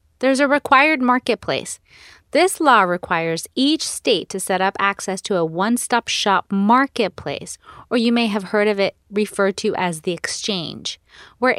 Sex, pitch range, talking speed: female, 180-250 Hz, 160 wpm